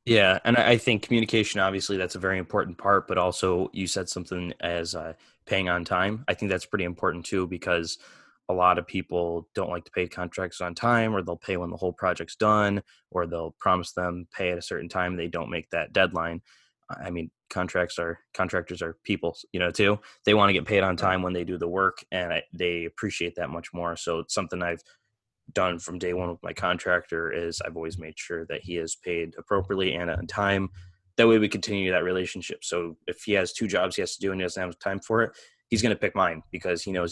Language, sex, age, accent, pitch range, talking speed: English, male, 20-39, American, 85-95 Hz, 235 wpm